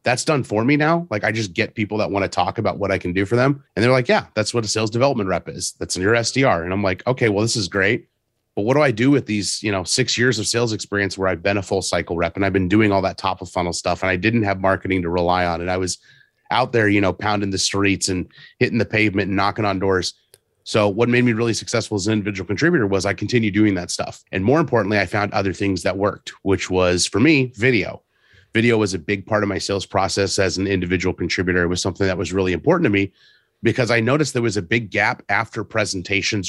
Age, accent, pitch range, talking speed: 30-49, American, 95-115 Hz, 270 wpm